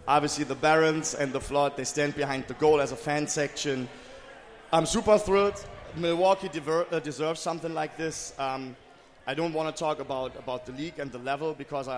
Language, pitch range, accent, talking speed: English, 135-160 Hz, German, 190 wpm